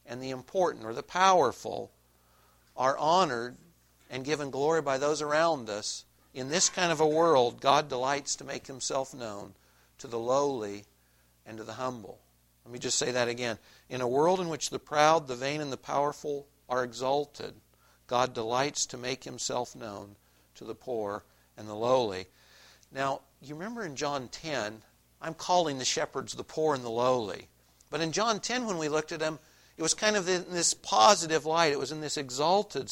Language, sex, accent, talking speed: English, male, American, 190 wpm